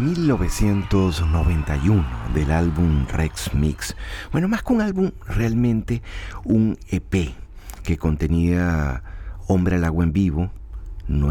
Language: Spanish